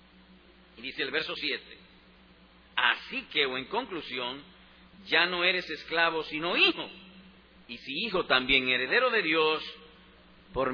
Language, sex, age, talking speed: Spanish, male, 50-69, 135 wpm